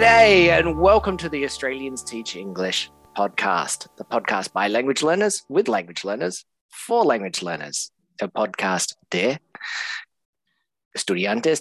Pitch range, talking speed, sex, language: 125-195 Hz, 120 wpm, male, English